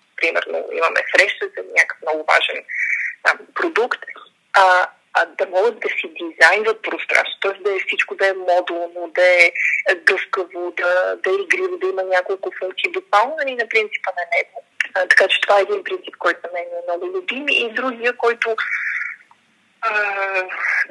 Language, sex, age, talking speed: Bulgarian, female, 20-39, 165 wpm